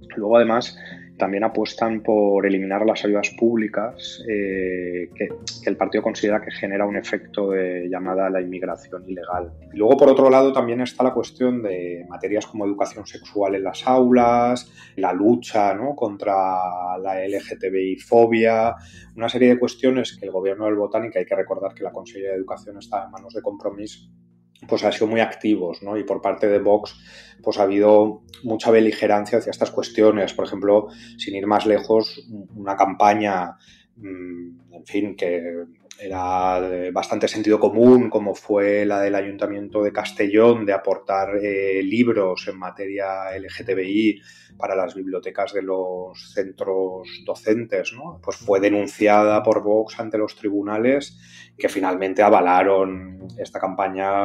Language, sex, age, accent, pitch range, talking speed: Spanish, male, 20-39, Spanish, 95-110 Hz, 150 wpm